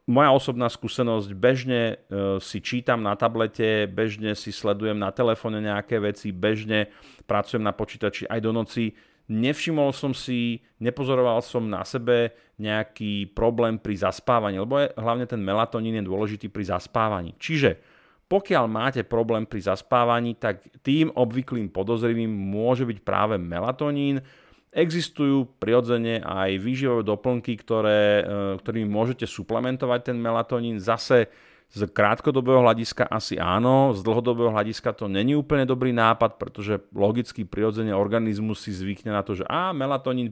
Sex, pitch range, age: male, 105-125 Hz, 40-59